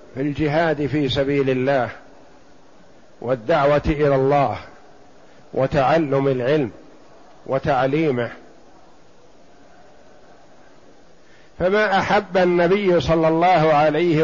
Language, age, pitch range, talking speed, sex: Arabic, 50-69, 150-185 Hz, 70 wpm, male